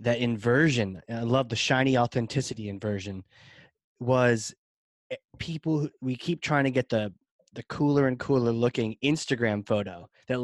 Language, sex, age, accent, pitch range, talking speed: English, male, 20-39, American, 115-140 Hz, 140 wpm